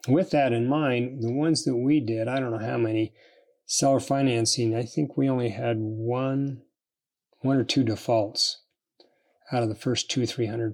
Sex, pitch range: male, 115-135 Hz